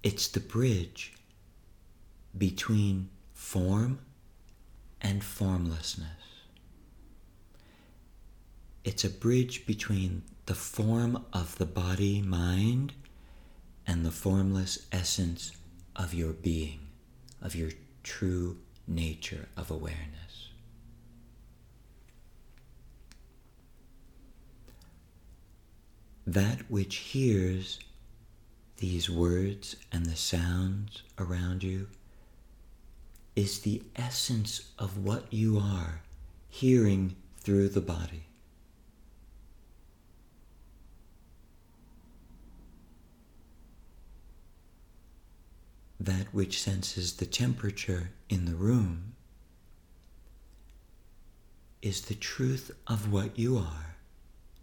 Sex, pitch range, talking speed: male, 85-105 Hz, 70 wpm